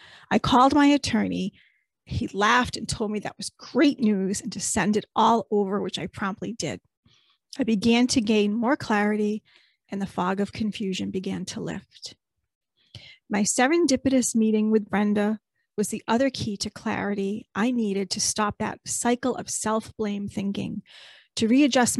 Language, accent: English, American